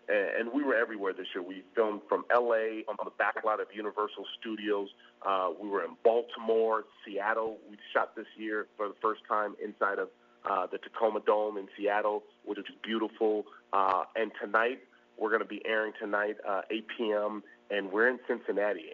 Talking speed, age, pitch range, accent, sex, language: 185 wpm, 30-49, 100-115 Hz, American, male, English